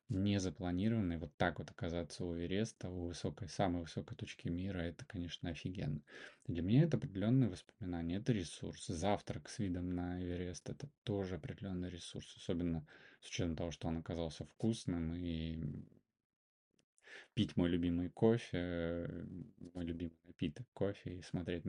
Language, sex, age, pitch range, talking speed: Russian, male, 20-39, 85-100 Hz, 140 wpm